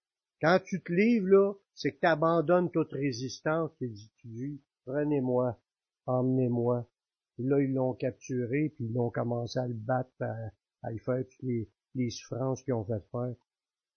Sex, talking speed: male, 165 wpm